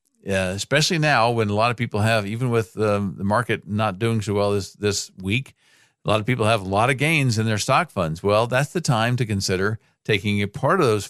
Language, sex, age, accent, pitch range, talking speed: English, male, 50-69, American, 100-130 Hz, 240 wpm